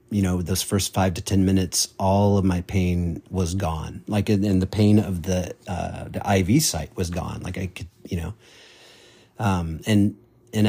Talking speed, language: 190 wpm, English